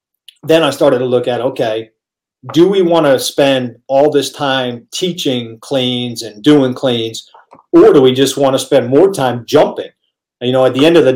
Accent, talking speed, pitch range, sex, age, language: American, 200 wpm, 120-145 Hz, male, 40-59, English